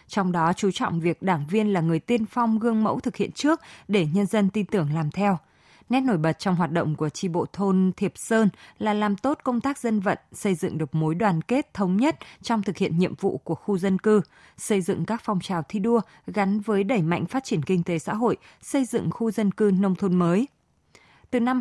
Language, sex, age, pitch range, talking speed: Vietnamese, female, 20-39, 180-220 Hz, 240 wpm